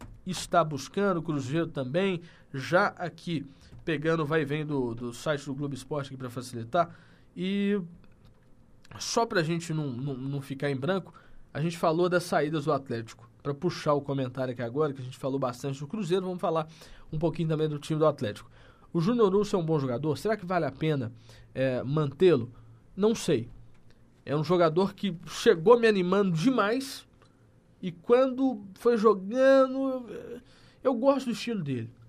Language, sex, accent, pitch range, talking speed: Portuguese, male, Brazilian, 140-185 Hz, 170 wpm